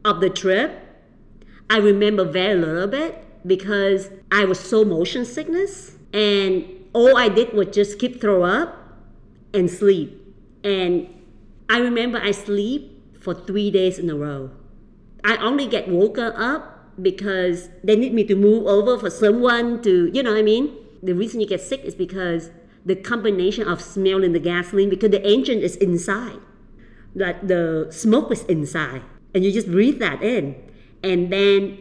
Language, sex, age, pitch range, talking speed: English, female, 50-69, 180-220 Hz, 170 wpm